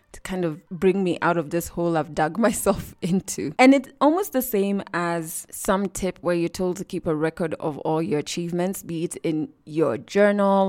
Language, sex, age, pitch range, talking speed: English, female, 20-39, 165-200 Hz, 200 wpm